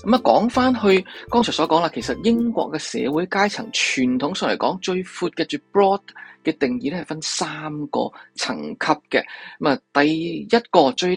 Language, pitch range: Chinese, 145-205 Hz